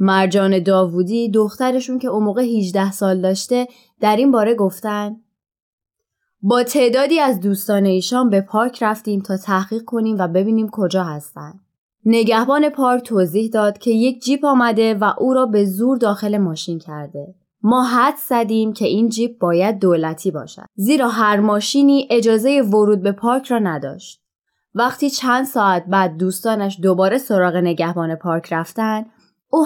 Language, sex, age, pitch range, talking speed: Persian, female, 20-39, 190-245 Hz, 145 wpm